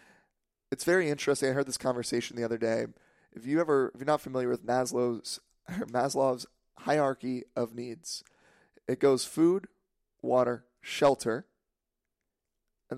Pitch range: 120-140 Hz